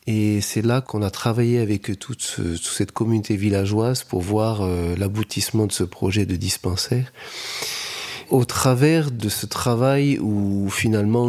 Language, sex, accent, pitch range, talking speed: French, male, French, 110-135 Hz, 155 wpm